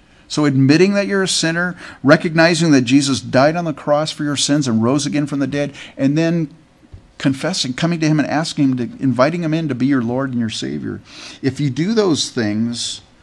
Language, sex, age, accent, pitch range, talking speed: English, male, 50-69, American, 120-150 Hz, 215 wpm